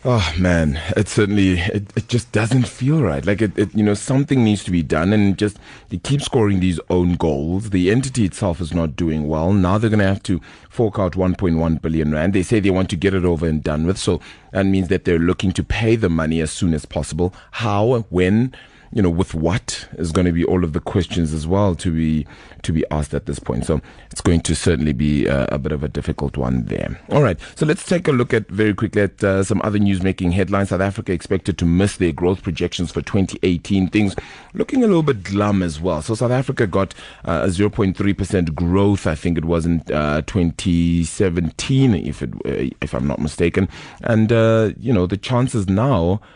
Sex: male